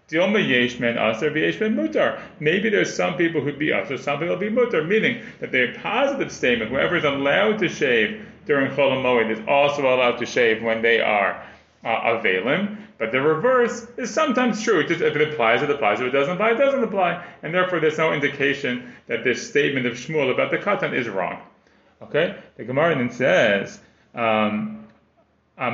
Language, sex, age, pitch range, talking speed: English, male, 30-49, 140-180 Hz, 180 wpm